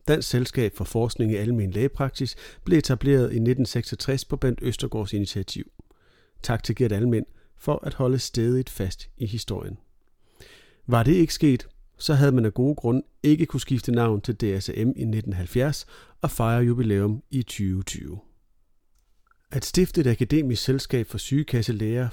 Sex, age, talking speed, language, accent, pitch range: male, 40-59, 150 wpm, Danish, native, 110-135 Hz